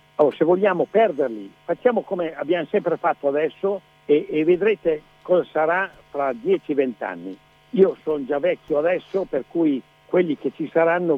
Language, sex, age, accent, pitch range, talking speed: Italian, male, 60-79, native, 145-205 Hz, 155 wpm